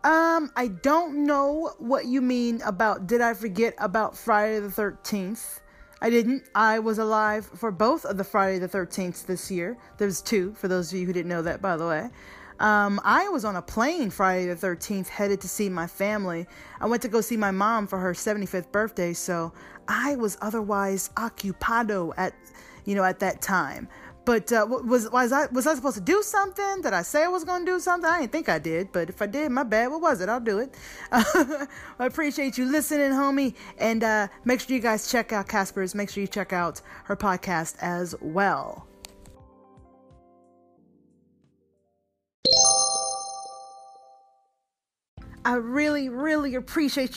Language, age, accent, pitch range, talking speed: English, 20-39, American, 185-255 Hz, 180 wpm